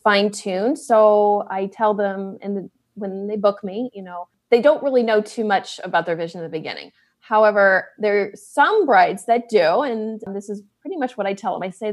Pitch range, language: 195-235 Hz, English